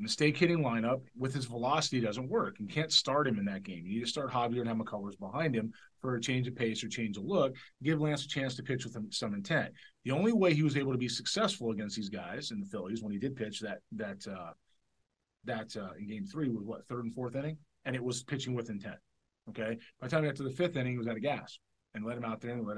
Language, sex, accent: English, male, American